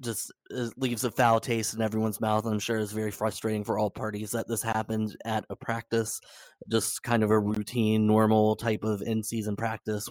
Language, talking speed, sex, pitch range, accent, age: English, 195 wpm, male, 110-115 Hz, American, 20-39